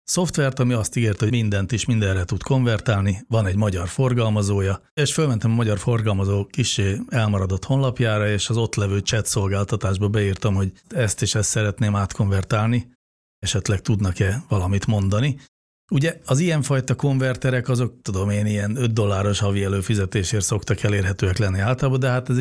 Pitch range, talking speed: 100-125 Hz, 155 wpm